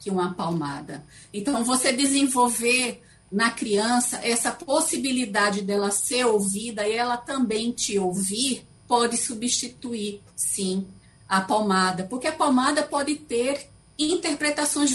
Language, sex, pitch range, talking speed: Portuguese, female, 195-250 Hz, 110 wpm